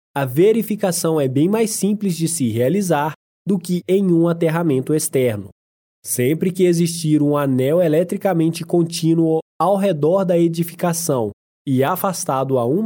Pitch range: 140-185 Hz